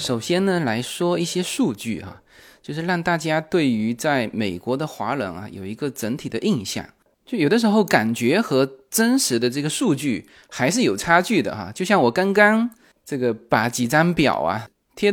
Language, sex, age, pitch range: Chinese, male, 20-39, 125-205 Hz